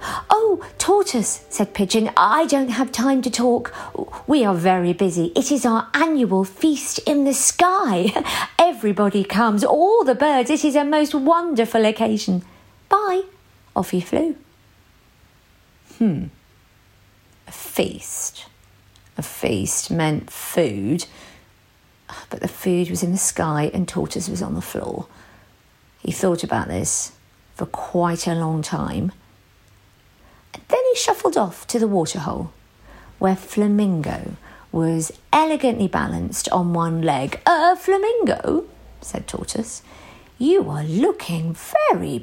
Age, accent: 40-59, British